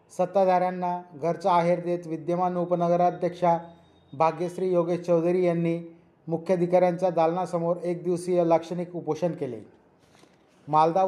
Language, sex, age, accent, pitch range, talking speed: Marathi, male, 30-49, native, 175-180 Hz, 95 wpm